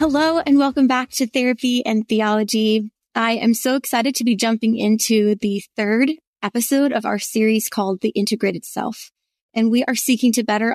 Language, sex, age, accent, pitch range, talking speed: English, female, 20-39, American, 210-250 Hz, 180 wpm